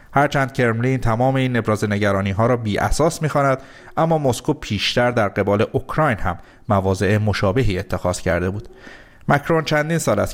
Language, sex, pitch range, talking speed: Persian, male, 100-130 Hz, 165 wpm